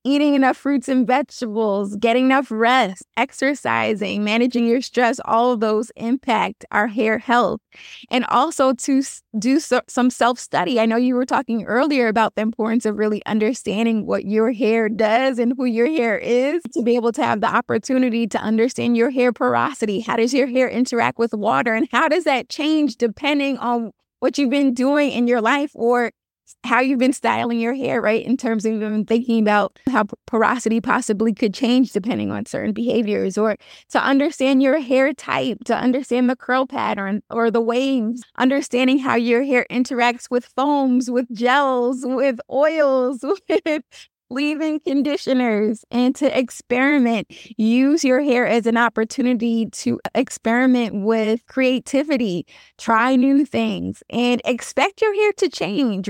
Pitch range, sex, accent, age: 230-270 Hz, female, American, 20-39